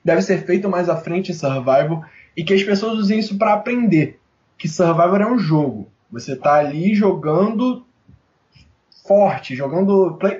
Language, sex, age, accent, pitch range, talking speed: Portuguese, male, 20-39, Brazilian, 155-195 Hz, 160 wpm